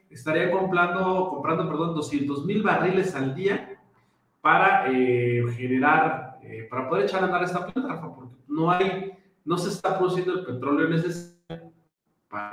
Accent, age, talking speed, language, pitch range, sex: Mexican, 40-59, 150 wpm, Spanish, 130-185 Hz, male